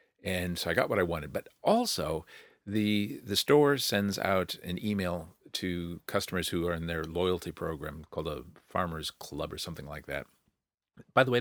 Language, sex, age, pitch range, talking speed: English, male, 50-69, 85-100 Hz, 185 wpm